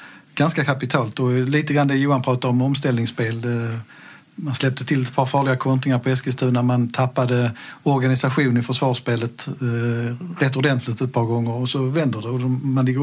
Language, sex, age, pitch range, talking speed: Swedish, male, 50-69, 125-145 Hz, 170 wpm